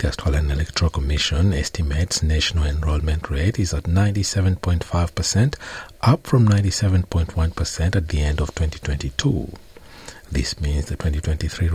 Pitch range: 75-95 Hz